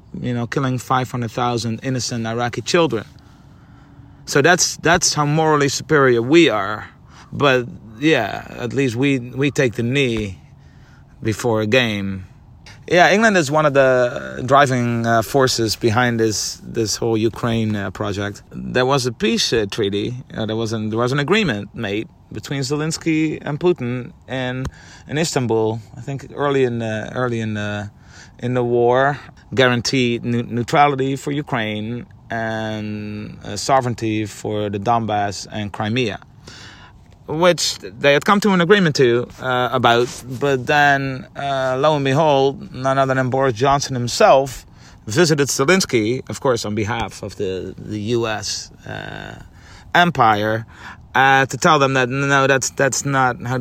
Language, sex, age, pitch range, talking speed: English, male, 30-49, 110-135 Hz, 150 wpm